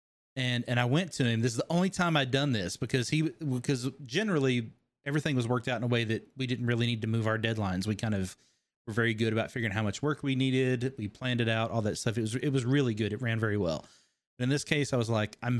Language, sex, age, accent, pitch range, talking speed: English, male, 30-49, American, 115-140 Hz, 275 wpm